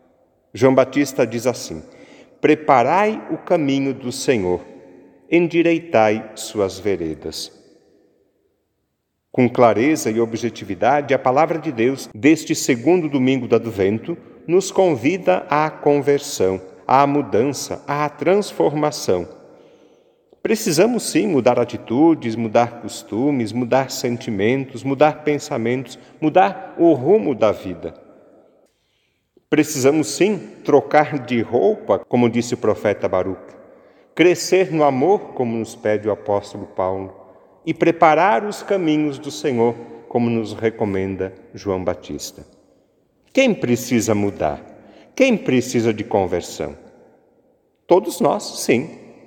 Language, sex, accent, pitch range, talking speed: Portuguese, male, Brazilian, 115-165 Hz, 110 wpm